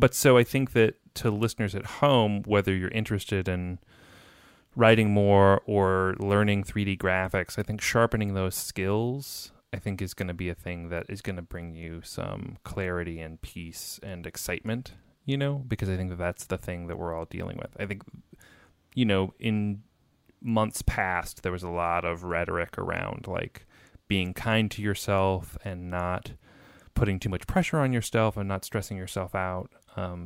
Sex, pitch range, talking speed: male, 90-110 Hz, 180 wpm